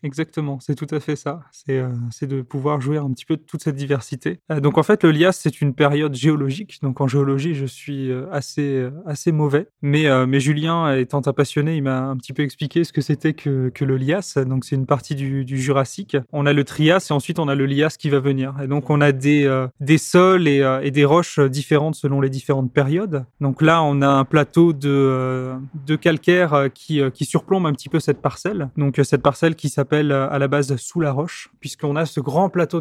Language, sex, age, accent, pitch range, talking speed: French, male, 20-39, French, 140-160 Hz, 230 wpm